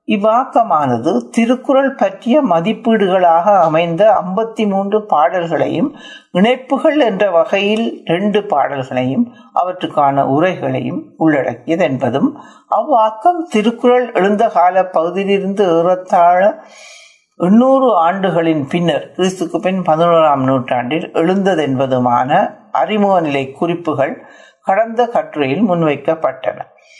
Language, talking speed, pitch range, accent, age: Tamil, 80 wpm, 160-225 Hz, native, 60-79